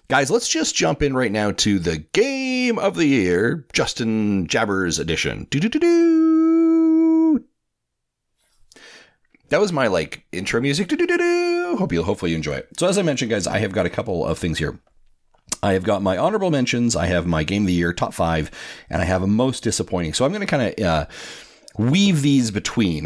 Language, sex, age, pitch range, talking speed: English, male, 40-59, 85-125 Hz, 195 wpm